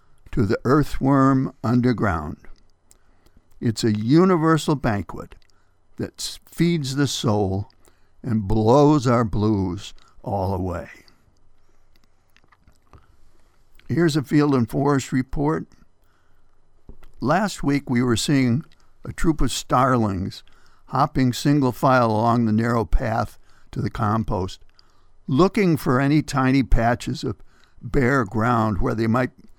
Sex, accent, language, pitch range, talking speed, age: male, American, English, 95-130 Hz, 110 wpm, 60-79